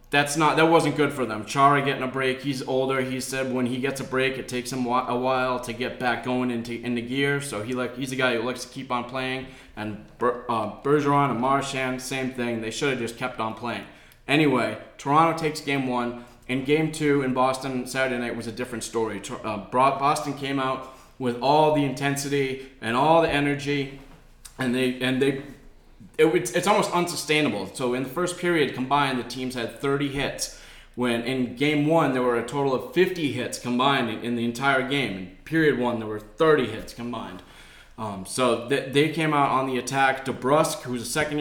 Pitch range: 120-140 Hz